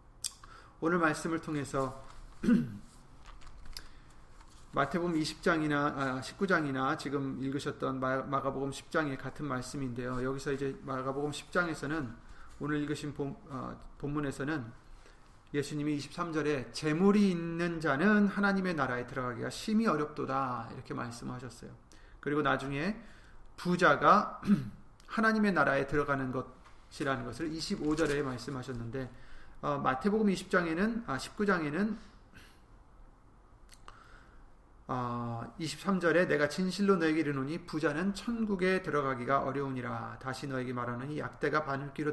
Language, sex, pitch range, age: Korean, male, 130-180 Hz, 30-49